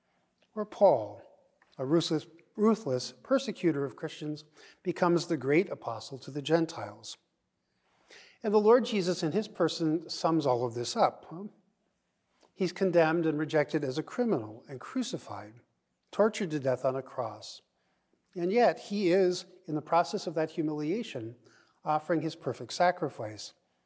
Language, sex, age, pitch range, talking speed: English, male, 50-69, 135-180 Hz, 140 wpm